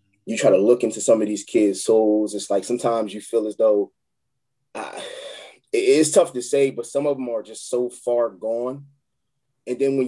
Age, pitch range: 20-39, 115-140 Hz